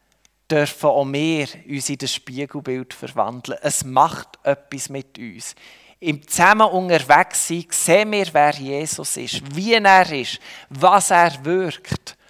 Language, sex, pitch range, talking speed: German, male, 150-185 Hz, 135 wpm